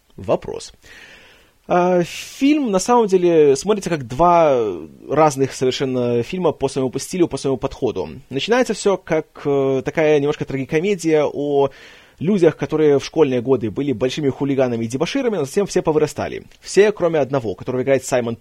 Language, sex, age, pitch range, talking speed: Russian, male, 20-39, 130-170 Hz, 145 wpm